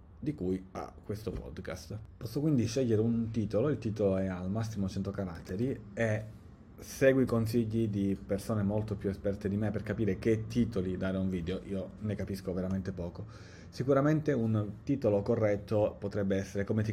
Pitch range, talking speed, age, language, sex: 95-110 Hz, 175 wpm, 30-49, Italian, male